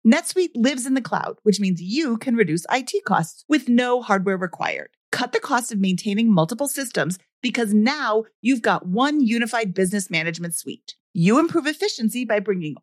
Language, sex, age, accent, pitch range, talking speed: English, female, 40-59, American, 195-270 Hz, 175 wpm